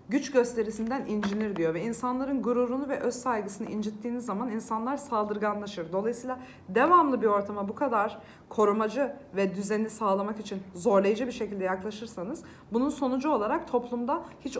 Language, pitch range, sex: Turkish, 200-255 Hz, female